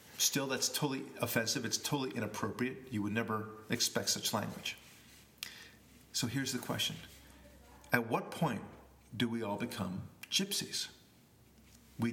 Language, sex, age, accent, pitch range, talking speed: English, male, 50-69, American, 105-125 Hz, 130 wpm